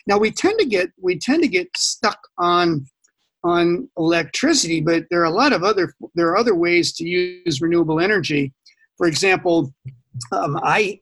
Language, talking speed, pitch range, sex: English, 175 wpm, 155-195 Hz, male